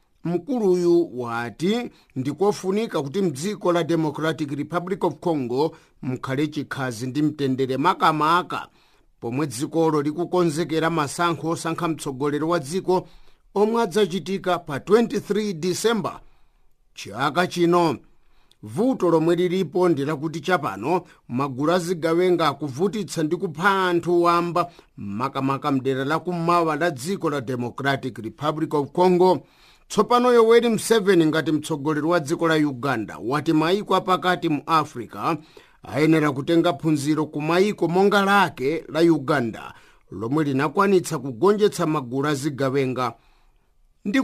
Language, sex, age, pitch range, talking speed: English, male, 50-69, 150-185 Hz, 110 wpm